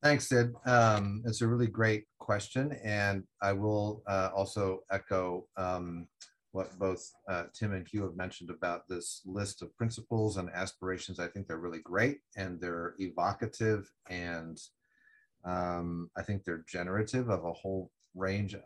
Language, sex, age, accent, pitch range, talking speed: English, male, 30-49, American, 90-115 Hz, 155 wpm